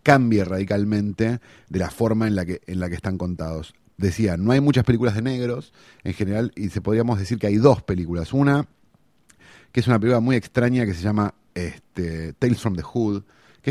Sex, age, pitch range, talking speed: male, 30-49, 90-110 Hz, 200 wpm